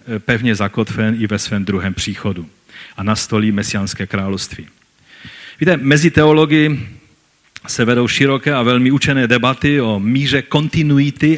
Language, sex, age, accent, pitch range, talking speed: Czech, male, 40-59, native, 110-145 Hz, 125 wpm